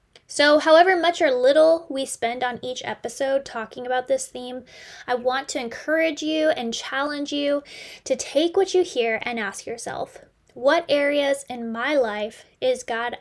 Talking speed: 170 wpm